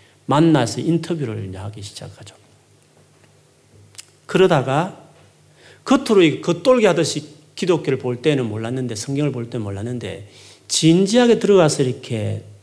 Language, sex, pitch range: Korean, male, 110-155 Hz